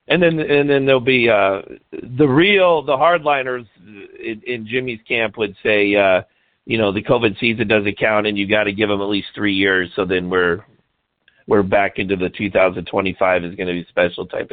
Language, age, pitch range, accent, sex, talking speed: English, 40-59, 100-125 Hz, American, male, 200 wpm